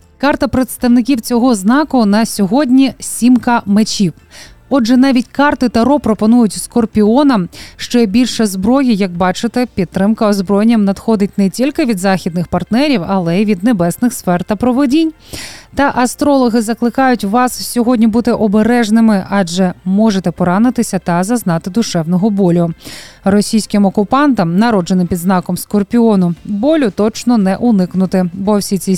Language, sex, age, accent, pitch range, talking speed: Ukrainian, female, 20-39, native, 190-245 Hz, 130 wpm